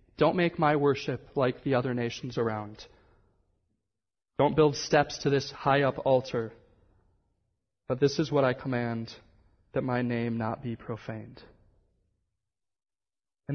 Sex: male